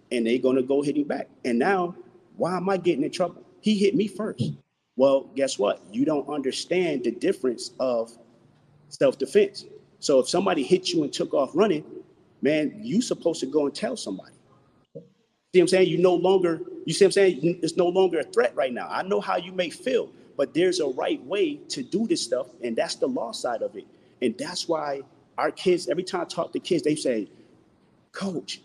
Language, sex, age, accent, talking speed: English, male, 30-49, American, 215 wpm